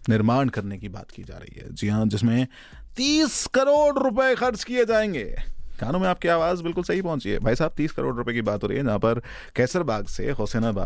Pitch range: 110-150 Hz